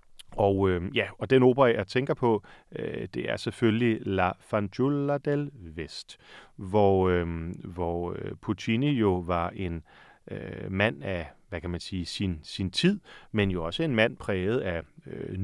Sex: male